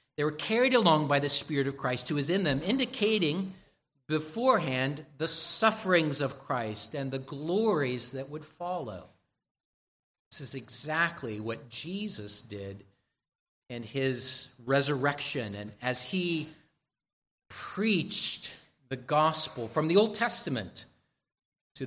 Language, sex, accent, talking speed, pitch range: English, male, American, 125 wpm, 125-160 Hz